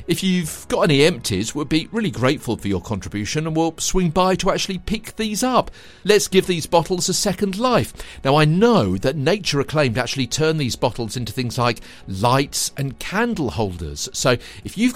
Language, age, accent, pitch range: English, 50-69, British, 105-160 Hz